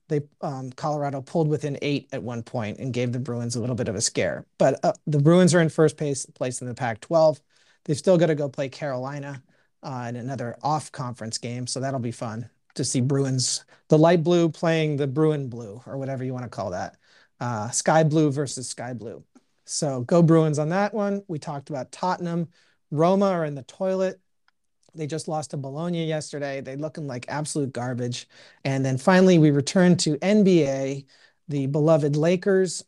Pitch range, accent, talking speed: 130-165 Hz, American, 190 wpm